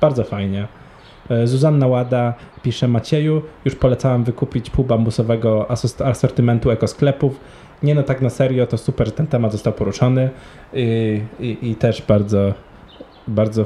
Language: Polish